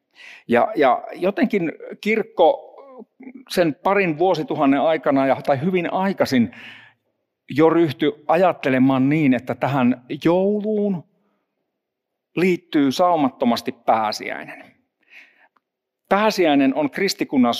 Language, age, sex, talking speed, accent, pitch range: Finnish, 50-69, male, 80 wpm, native, 150-240 Hz